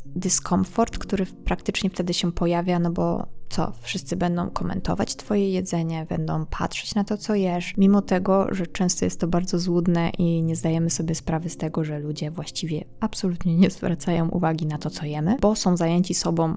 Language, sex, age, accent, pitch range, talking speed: Polish, female, 20-39, native, 160-180 Hz, 180 wpm